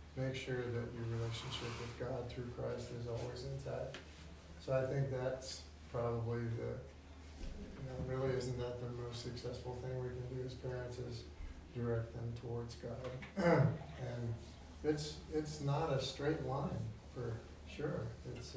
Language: English